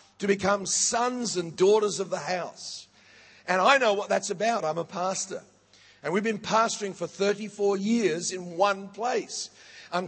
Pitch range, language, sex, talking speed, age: 185-225 Hz, English, male, 165 wpm, 50-69